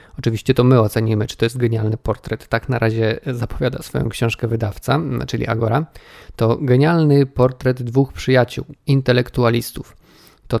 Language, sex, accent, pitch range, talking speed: Polish, male, native, 115-135 Hz, 140 wpm